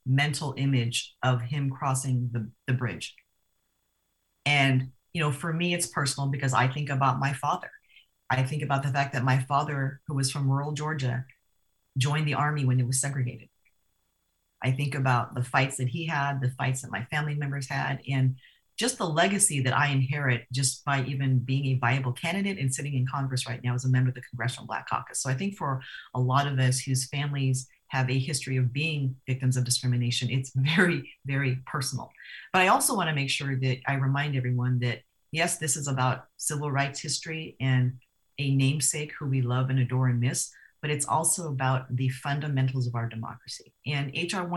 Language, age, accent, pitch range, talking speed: English, 40-59, American, 125-145 Hz, 195 wpm